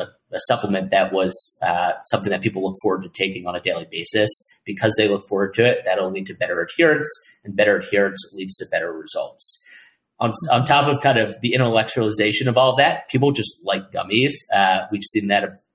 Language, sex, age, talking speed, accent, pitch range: English, male, 30-49, 200 wpm, American, 95-115 Hz